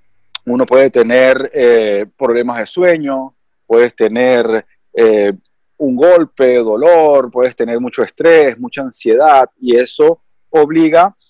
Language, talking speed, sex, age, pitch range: Spanish, 115 wpm, male, 30-49, 120-170 Hz